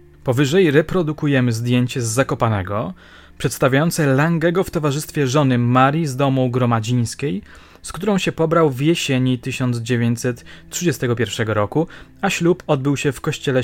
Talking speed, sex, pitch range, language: 125 wpm, male, 125-160 Hz, Polish